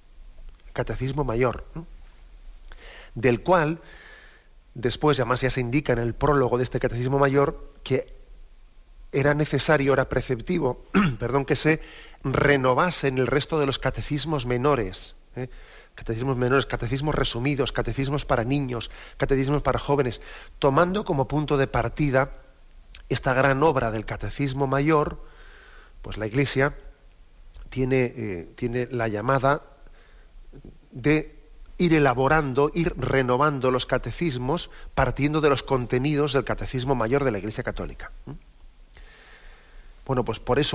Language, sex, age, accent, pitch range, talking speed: Spanish, male, 40-59, Spanish, 120-145 Hz, 120 wpm